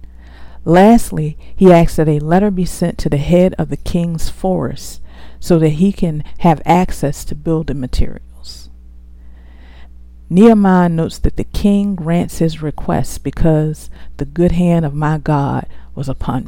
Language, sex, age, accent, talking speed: English, female, 50-69, American, 150 wpm